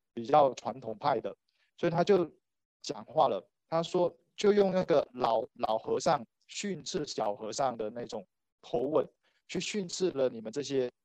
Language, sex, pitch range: Chinese, male, 125-165 Hz